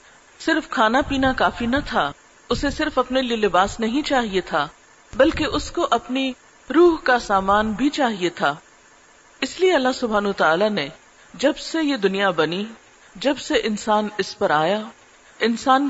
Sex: female